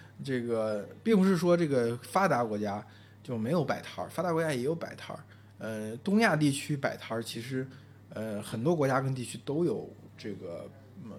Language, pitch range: Chinese, 105-155 Hz